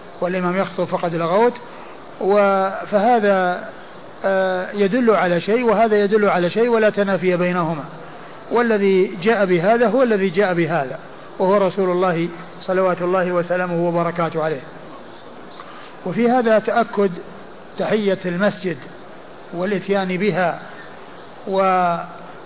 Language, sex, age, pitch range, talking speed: Arabic, male, 50-69, 180-200 Hz, 100 wpm